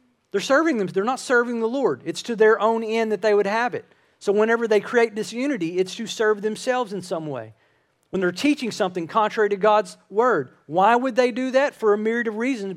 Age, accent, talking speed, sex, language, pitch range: 40-59, American, 225 wpm, male, English, 155-215 Hz